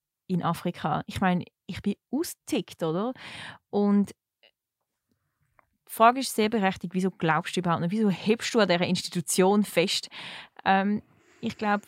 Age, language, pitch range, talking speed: 20-39, German, 180-220 Hz, 145 wpm